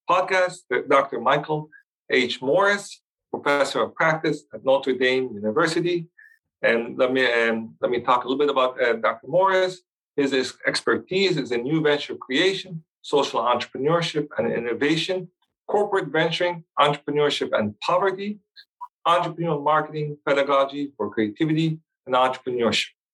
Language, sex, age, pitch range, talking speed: English, male, 40-59, 130-170 Hz, 130 wpm